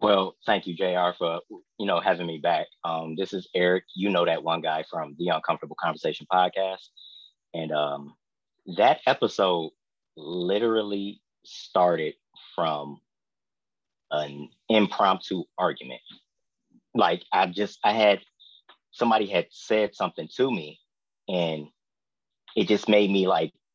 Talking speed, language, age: 130 wpm, English, 30-49